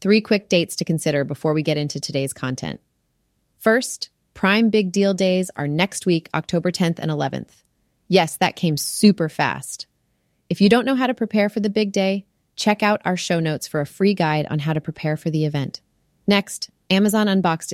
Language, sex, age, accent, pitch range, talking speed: English, female, 30-49, American, 155-190 Hz, 195 wpm